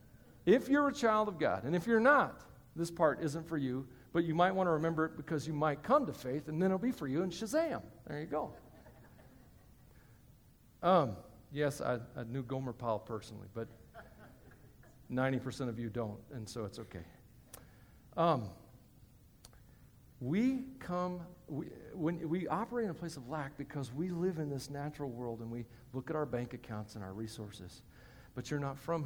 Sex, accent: male, American